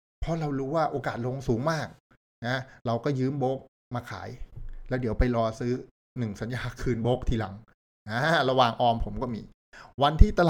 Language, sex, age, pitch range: Thai, male, 60-79, 105-130 Hz